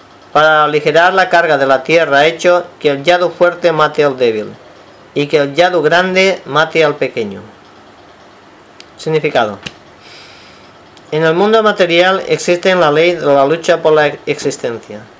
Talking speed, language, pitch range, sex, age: 150 wpm, Spanish, 150-180 Hz, male, 40-59